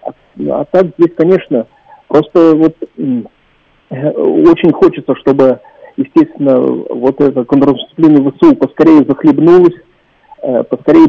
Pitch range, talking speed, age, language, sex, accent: 135-200 Hz, 105 wpm, 40-59, Russian, male, native